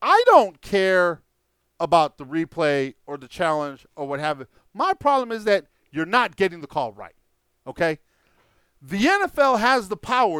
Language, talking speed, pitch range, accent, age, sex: English, 165 wpm, 160-245 Hz, American, 50-69, male